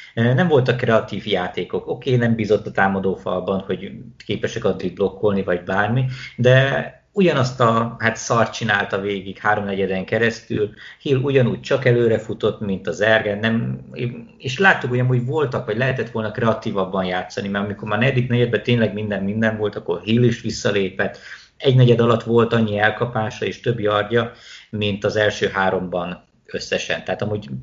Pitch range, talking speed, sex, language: 105-120 Hz, 155 wpm, male, Hungarian